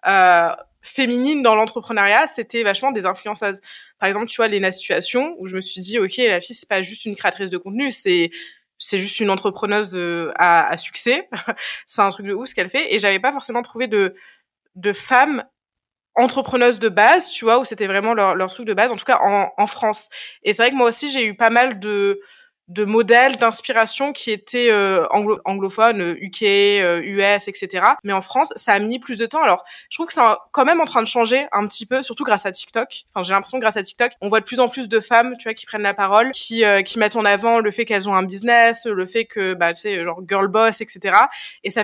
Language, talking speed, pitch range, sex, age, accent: French, 240 wpm, 200-255 Hz, female, 20-39, French